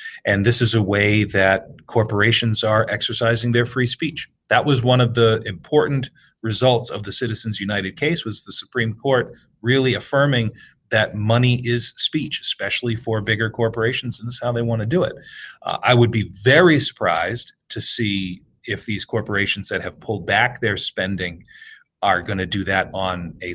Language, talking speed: English, 180 wpm